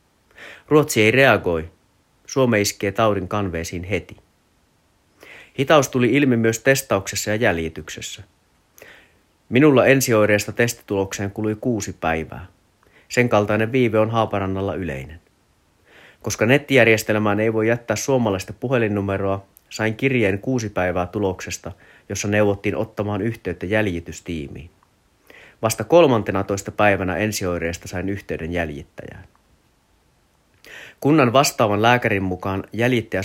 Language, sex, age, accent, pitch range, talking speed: Finnish, male, 30-49, native, 95-115 Hz, 105 wpm